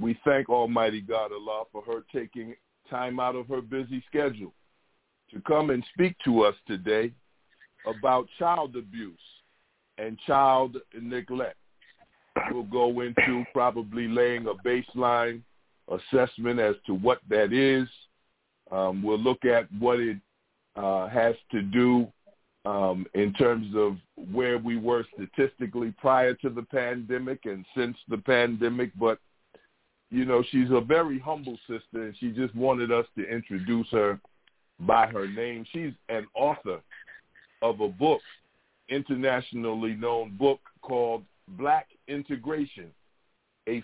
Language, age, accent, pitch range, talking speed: English, 50-69, American, 115-140 Hz, 135 wpm